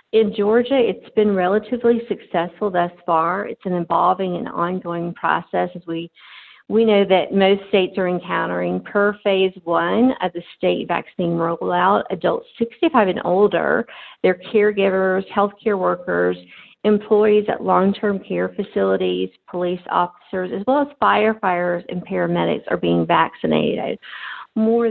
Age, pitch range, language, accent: 50-69, 165-220 Hz, English, American